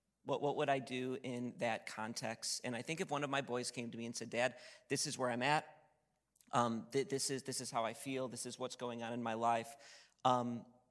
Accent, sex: American, male